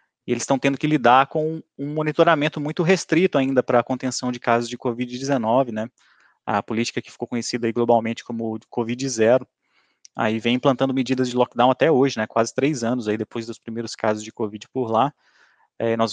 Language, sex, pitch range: Portuguese, male, 115-140 Hz